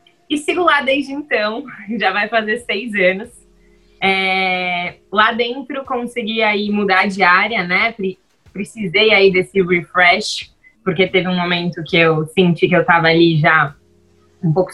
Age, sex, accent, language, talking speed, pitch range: 20-39, female, Brazilian, Portuguese, 155 wpm, 185-240 Hz